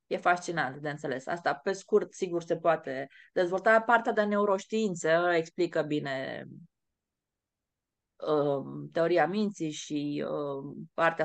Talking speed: 105 wpm